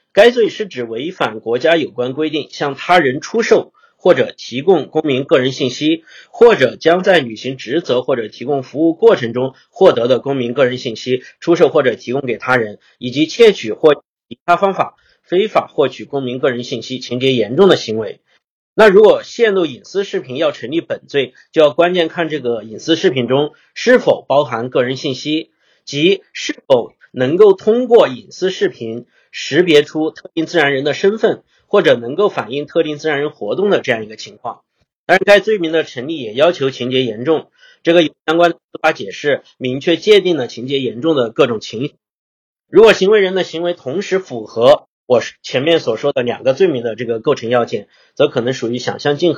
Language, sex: Chinese, male